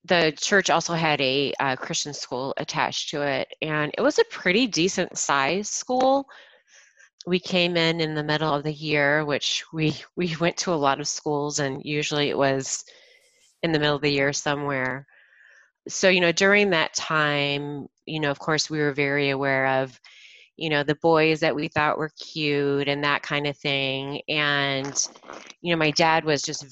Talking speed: 185 wpm